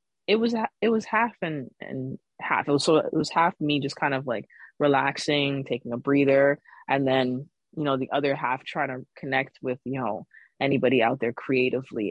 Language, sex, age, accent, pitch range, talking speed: English, female, 20-39, American, 130-155 Hz, 190 wpm